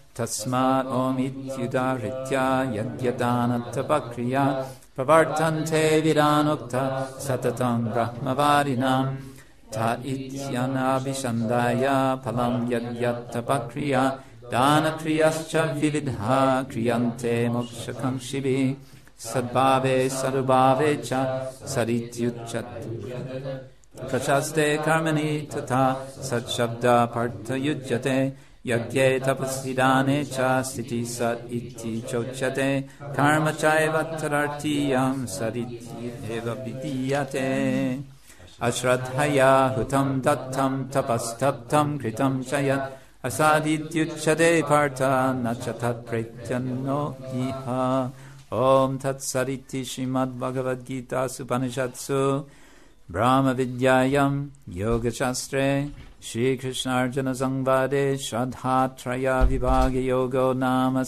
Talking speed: 75 wpm